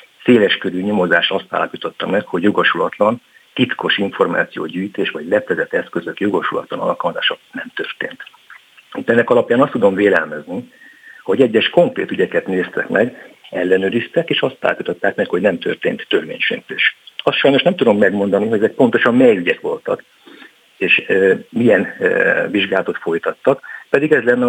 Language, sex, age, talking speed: Hungarian, male, 50-69, 140 wpm